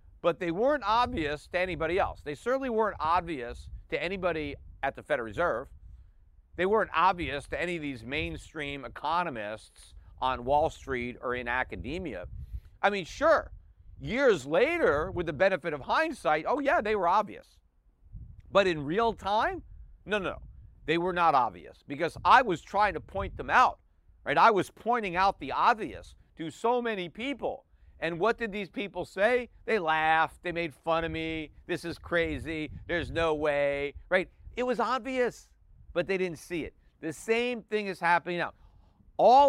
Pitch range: 150-215 Hz